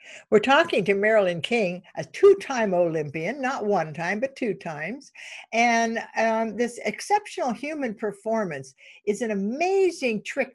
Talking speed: 135 wpm